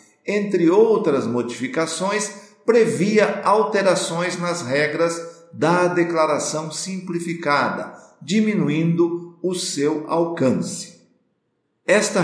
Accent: Brazilian